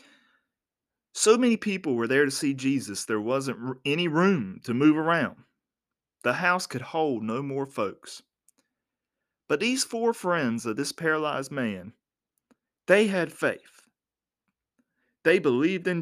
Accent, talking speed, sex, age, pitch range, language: American, 135 wpm, male, 40-59, 130-185 Hz, English